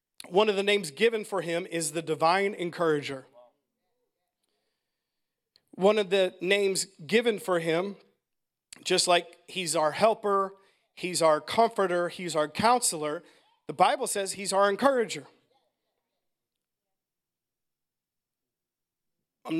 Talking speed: 110 wpm